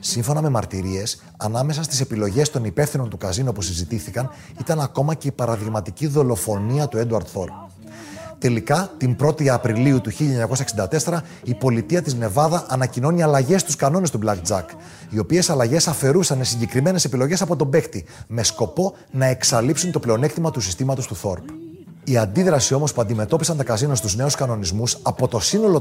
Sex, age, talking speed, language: male, 30-49, 165 wpm, Greek